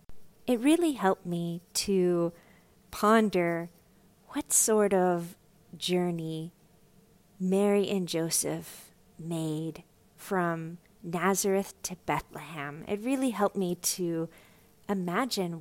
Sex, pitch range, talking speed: female, 170-220 Hz, 90 wpm